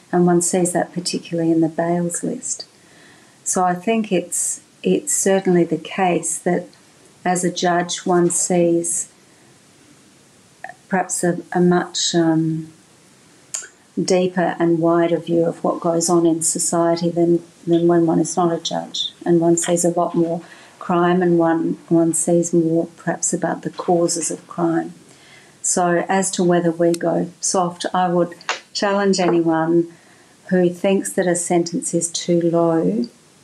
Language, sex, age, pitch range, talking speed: English, female, 50-69, 170-180 Hz, 150 wpm